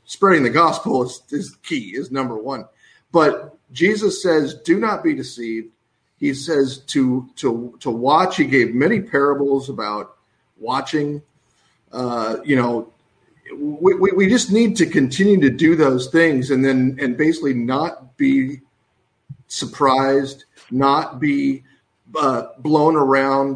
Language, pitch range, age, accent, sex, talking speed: English, 130-160 Hz, 40-59, American, male, 140 wpm